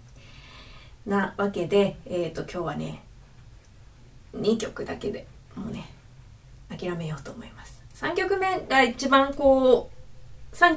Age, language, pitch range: 20-39, Japanese, 175-265 Hz